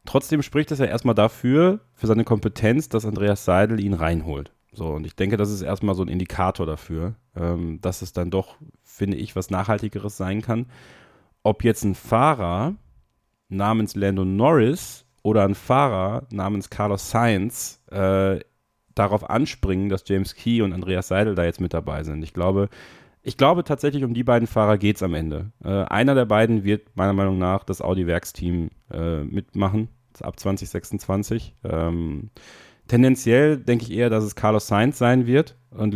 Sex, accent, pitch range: male, German, 95-120 Hz